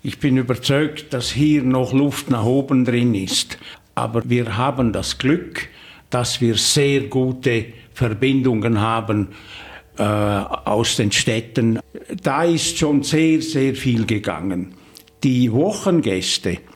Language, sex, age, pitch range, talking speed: German, male, 60-79, 115-150 Hz, 125 wpm